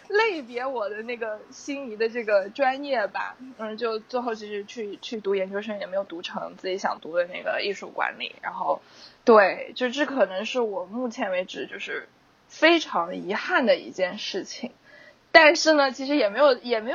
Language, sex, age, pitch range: Chinese, female, 20-39, 235-335 Hz